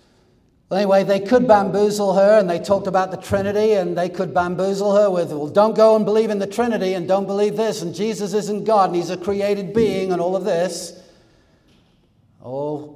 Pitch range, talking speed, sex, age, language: 145-190 Hz, 200 wpm, male, 60-79, English